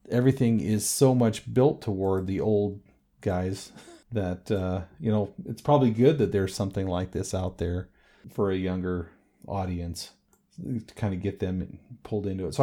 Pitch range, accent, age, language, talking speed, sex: 95-120 Hz, American, 40-59, English, 170 wpm, male